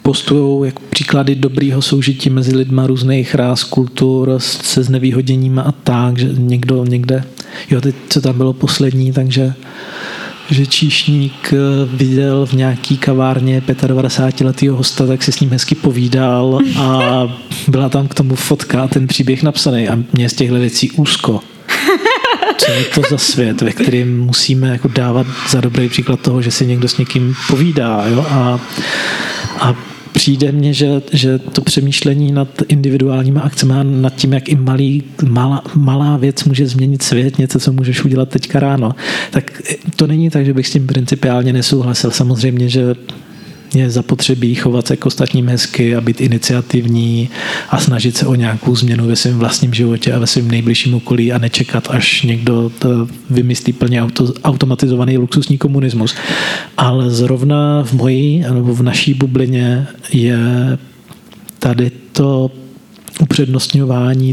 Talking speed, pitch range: 150 wpm, 125-140 Hz